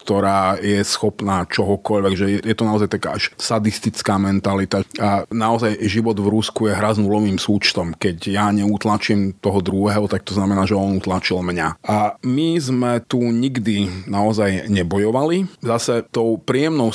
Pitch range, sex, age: 95-110 Hz, male, 30-49